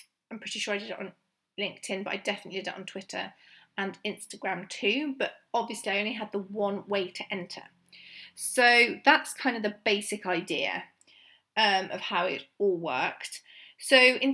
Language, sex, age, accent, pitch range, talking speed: English, female, 30-49, British, 195-240 Hz, 180 wpm